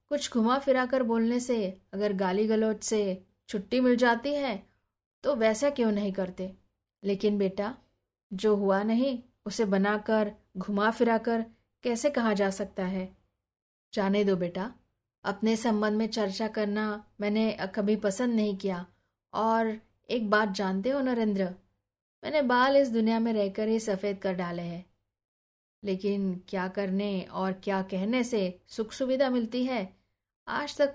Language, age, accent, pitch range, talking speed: Hindi, 20-39, native, 190-240 Hz, 145 wpm